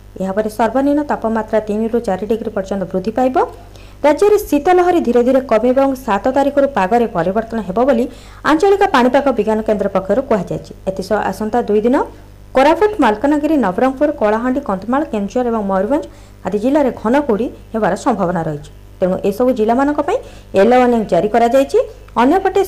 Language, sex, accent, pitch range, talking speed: Hindi, female, native, 210-285 Hz, 120 wpm